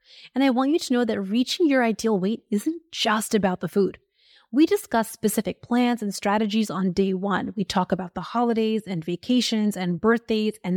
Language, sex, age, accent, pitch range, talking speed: English, female, 30-49, American, 200-245 Hz, 195 wpm